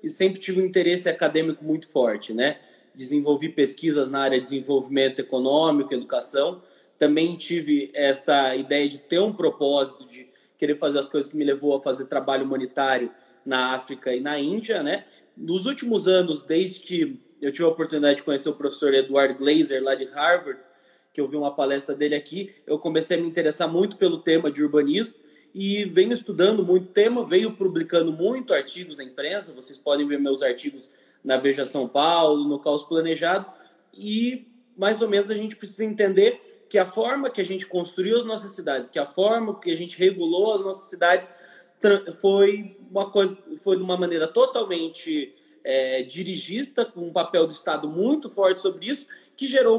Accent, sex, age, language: Brazilian, male, 20-39, Portuguese